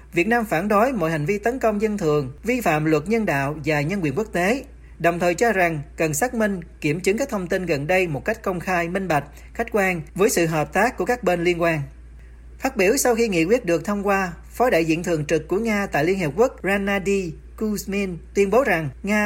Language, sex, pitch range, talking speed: Vietnamese, male, 150-210 Hz, 245 wpm